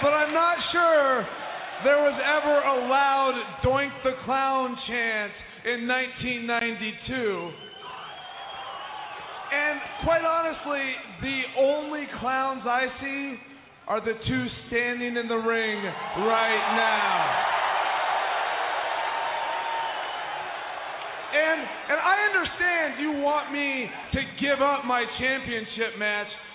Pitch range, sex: 235-285 Hz, male